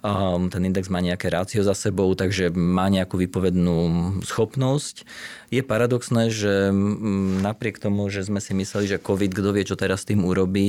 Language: Slovak